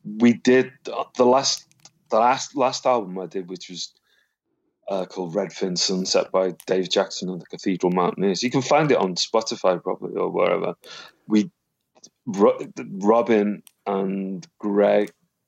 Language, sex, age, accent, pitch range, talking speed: English, male, 30-49, British, 95-105 Hz, 145 wpm